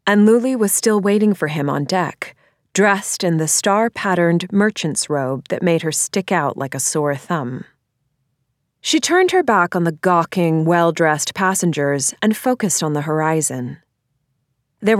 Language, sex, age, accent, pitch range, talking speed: English, female, 30-49, American, 140-195 Hz, 155 wpm